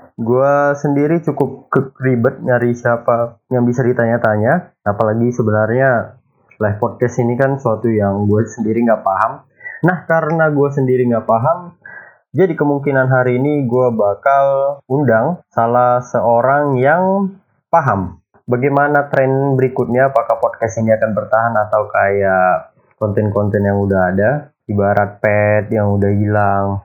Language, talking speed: Indonesian, 125 wpm